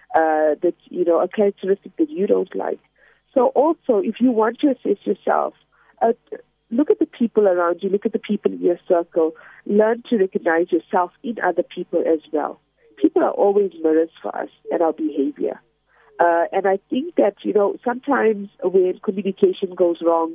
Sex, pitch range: female, 165-225 Hz